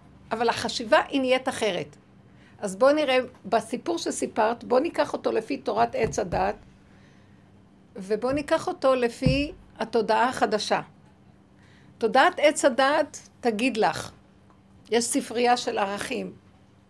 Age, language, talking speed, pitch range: 60-79, Hebrew, 115 wpm, 205-265 Hz